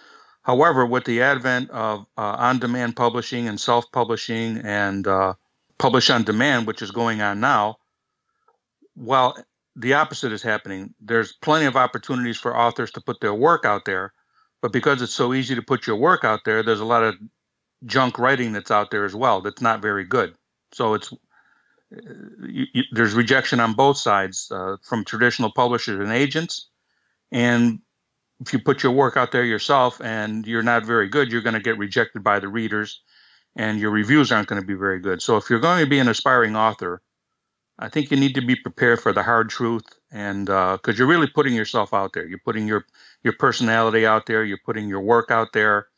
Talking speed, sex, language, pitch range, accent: 195 wpm, male, English, 105-125 Hz, American